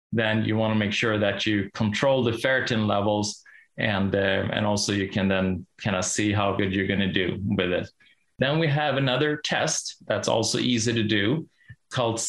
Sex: male